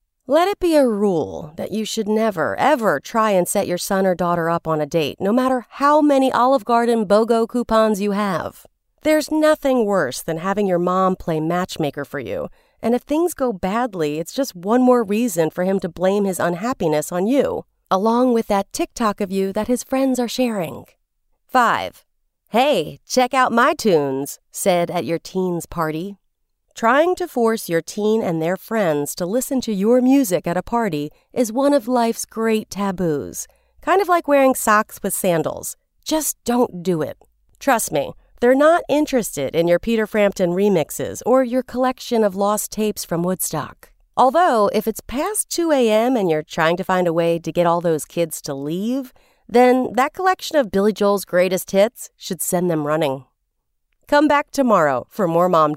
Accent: American